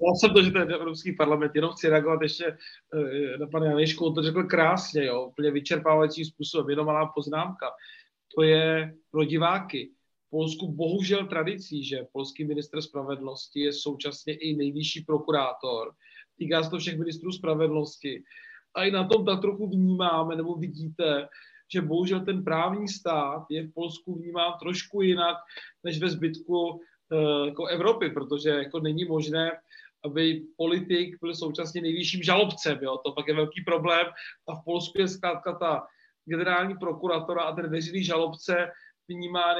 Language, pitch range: Czech, 155-180 Hz